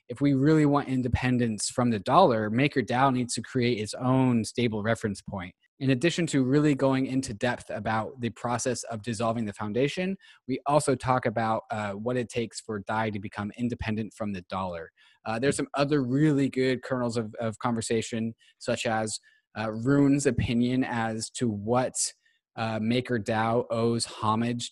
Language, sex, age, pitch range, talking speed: English, male, 20-39, 110-130 Hz, 165 wpm